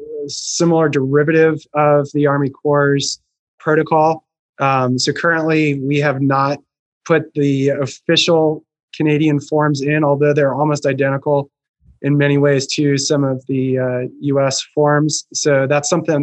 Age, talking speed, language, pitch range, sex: 20-39, 135 wpm, English, 135-155 Hz, male